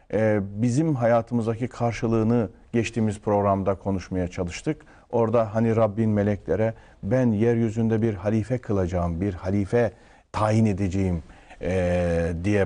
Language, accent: Turkish, native